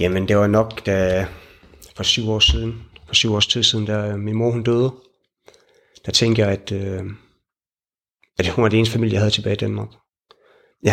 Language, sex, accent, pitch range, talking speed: Danish, male, native, 100-115 Hz, 200 wpm